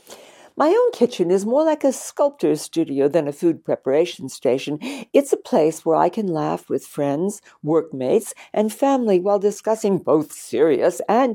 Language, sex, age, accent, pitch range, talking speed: English, female, 60-79, American, 160-240 Hz, 165 wpm